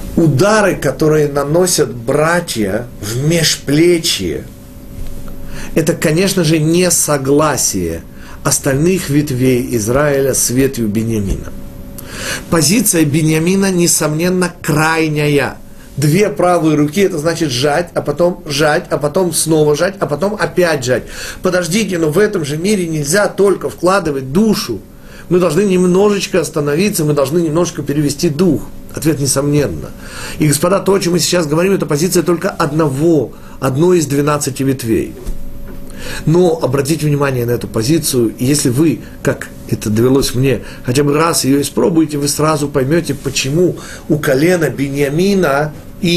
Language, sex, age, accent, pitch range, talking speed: Russian, male, 40-59, native, 135-175 Hz, 135 wpm